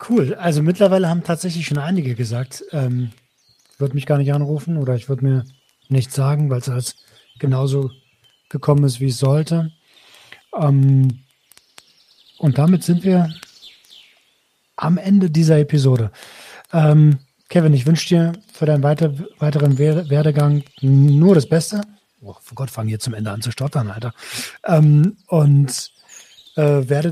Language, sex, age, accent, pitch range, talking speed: German, male, 40-59, German, 135-165 Hz, 145 wpm